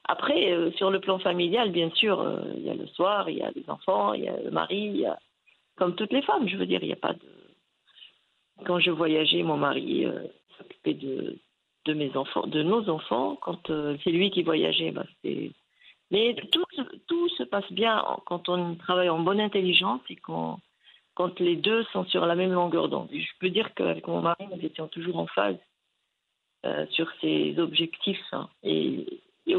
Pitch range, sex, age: 170-215 Hz, female, 50-69